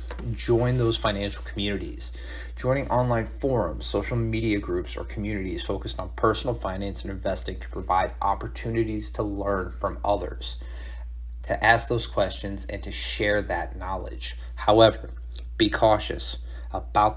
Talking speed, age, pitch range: 135 wpm, 30-49, 95-120 Hz